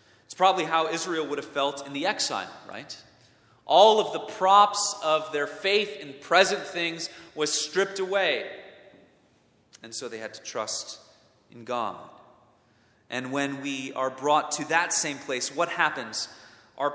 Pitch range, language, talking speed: 115-155 Hz, English, 150 wpm